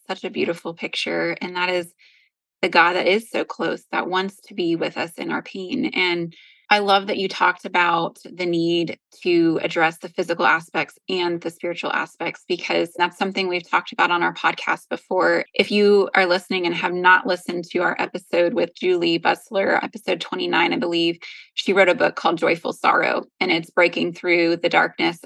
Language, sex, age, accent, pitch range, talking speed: English, female, 20-39, American, 175-205 Hz, 190 wpm